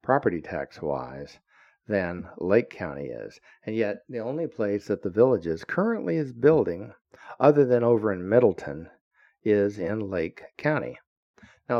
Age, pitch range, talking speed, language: 60-79, 95-120 Hz, 140 wpm, English